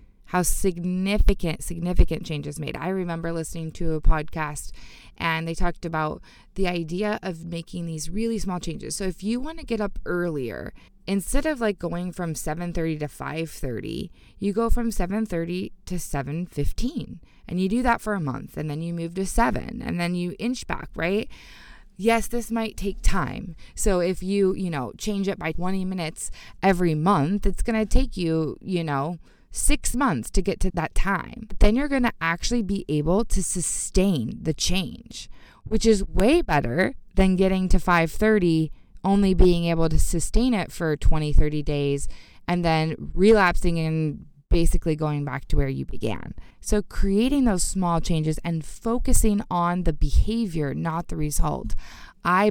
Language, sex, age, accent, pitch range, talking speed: English, female, 20-39, American, 160-200 Hz, 170 wpm